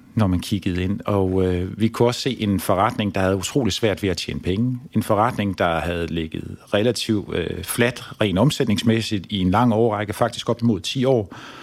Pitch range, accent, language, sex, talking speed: 95-120 Hz, native, Danish, male, 200 wpm